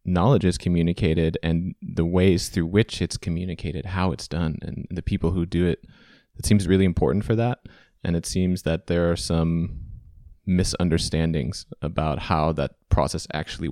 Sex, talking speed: male, 165 wpm